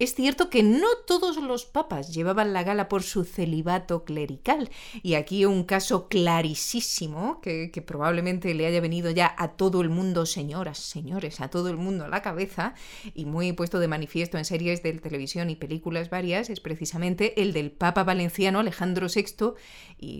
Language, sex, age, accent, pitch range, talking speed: Spanish, female, 30-49, Spanish, 165-215 Hz, 180 wpm